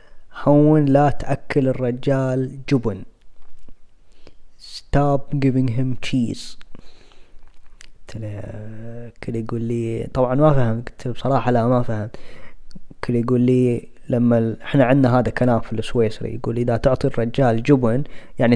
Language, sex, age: Arabic, female, 20-39